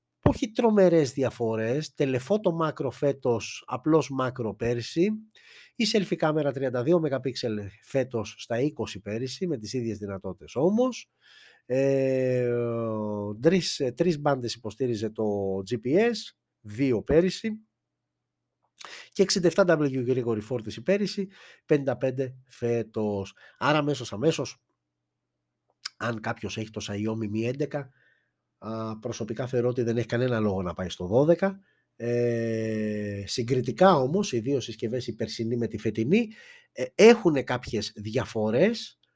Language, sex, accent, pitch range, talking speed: Greek, male, native, 110-165 Hz, 105 wpm